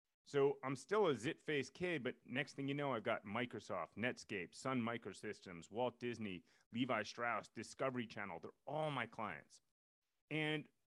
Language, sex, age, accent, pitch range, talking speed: English, male, 30-49, American, 115-140 Hz, 160 wpm